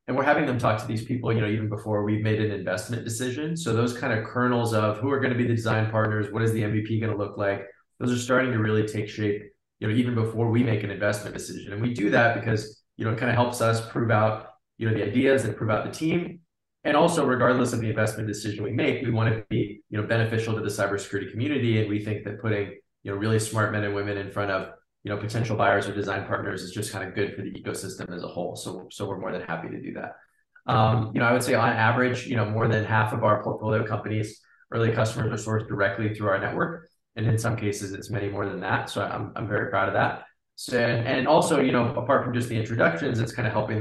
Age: 20-39